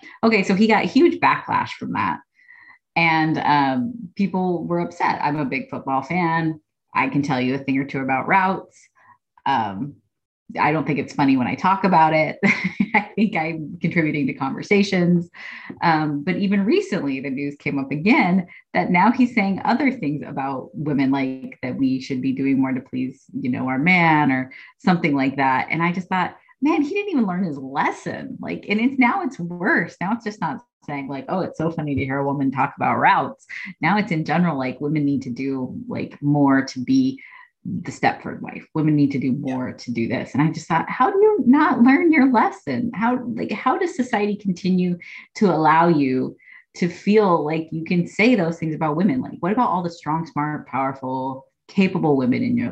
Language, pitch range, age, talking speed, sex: English, 140-225 Hz, 30-49, 205 wpm, female